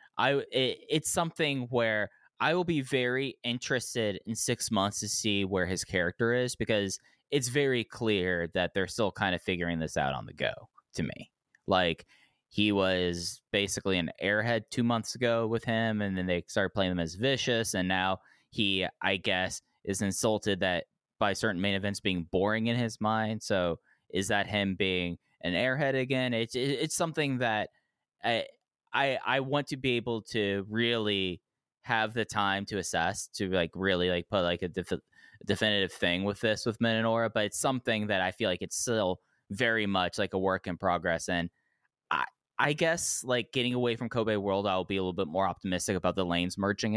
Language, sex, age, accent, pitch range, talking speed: English, male, 10-29, American, 95-120 Hz, 190 wpm